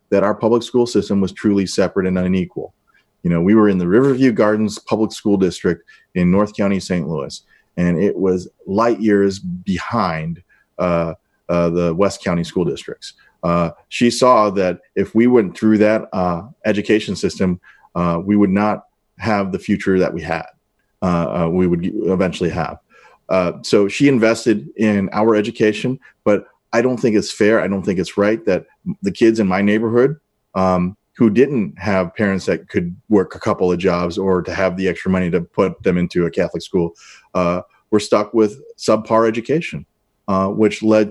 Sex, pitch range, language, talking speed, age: male, 90-110 Hz, English, 180 wpm, 30-49